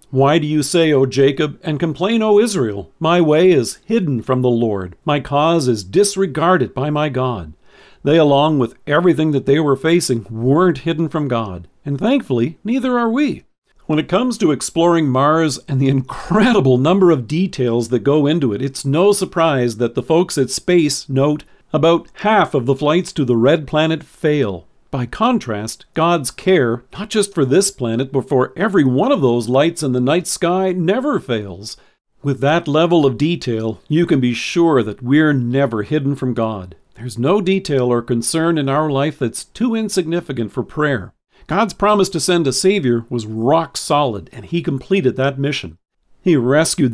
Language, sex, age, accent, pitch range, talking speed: English, male, 50-69, American, 125-170 Hz, 180 wpm